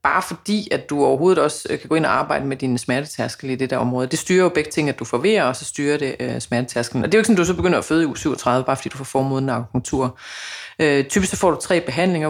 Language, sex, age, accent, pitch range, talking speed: Danish, female, 30-49, native, 140-180 Hz, 290 wpm